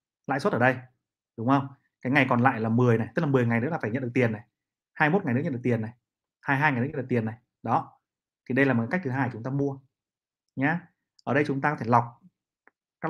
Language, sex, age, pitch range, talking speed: Vietnamese, male, 30-49, 120-145 Hz, 265 wpm